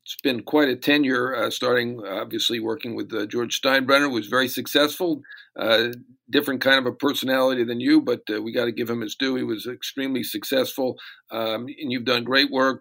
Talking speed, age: 205 wpm, 50-69